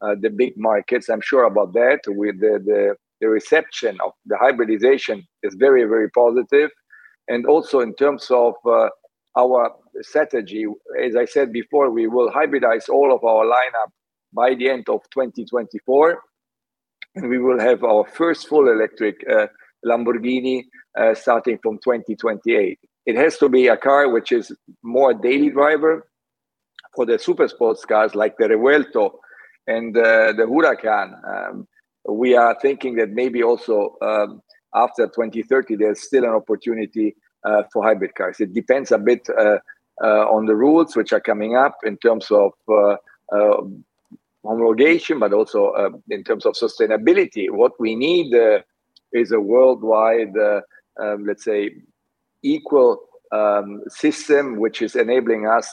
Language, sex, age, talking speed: English, male, 50-69, 155 wpm